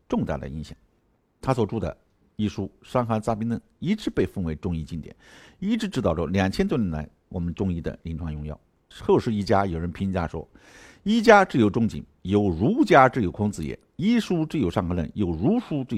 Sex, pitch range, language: male, 85-115 Hz, Chinese